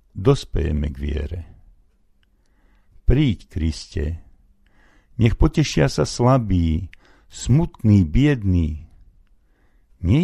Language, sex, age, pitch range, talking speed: Slovak, male, 60-79, 75-105 Hz, 70 wpm